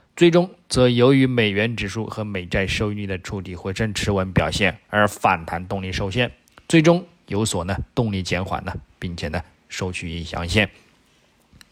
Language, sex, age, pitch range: Chinese, male, 20-39, 95-125 Hz